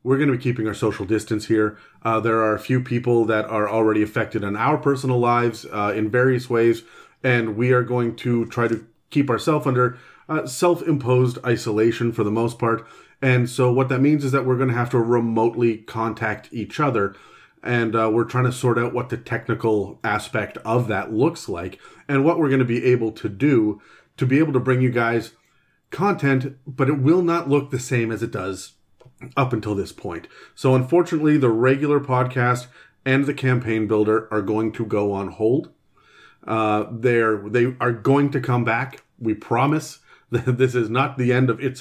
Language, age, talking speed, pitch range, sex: English, 30-49, 200 wpm, 115-130 Hz, male